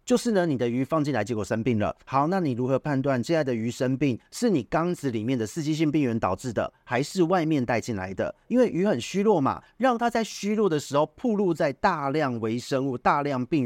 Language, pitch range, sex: Chinese, 120-170 Hz, male